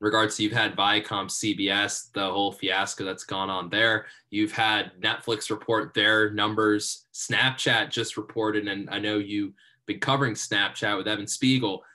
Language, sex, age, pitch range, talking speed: English, male, 20-39, 105-120 Hz, 160 wpm